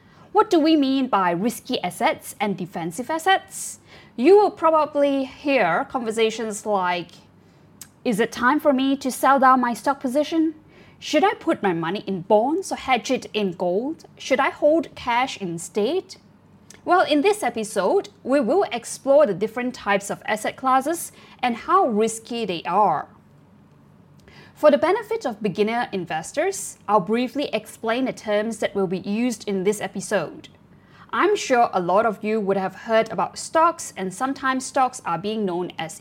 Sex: female